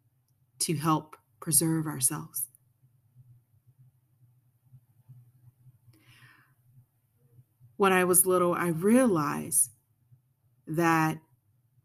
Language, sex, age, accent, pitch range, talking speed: English, female, 30-49, American, 125-170 Hz, 55 wpm